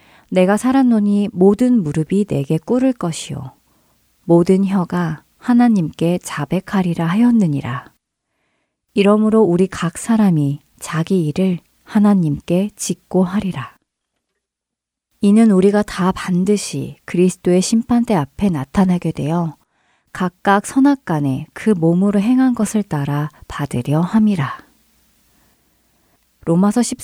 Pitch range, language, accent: 160-220 Hz, Korean, native